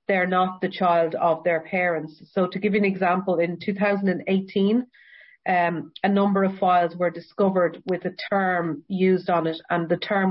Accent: Irish